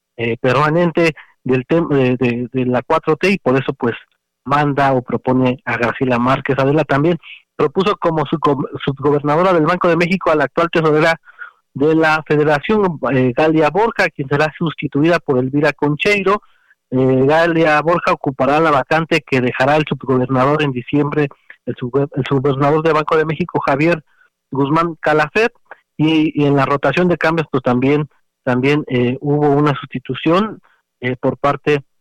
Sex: male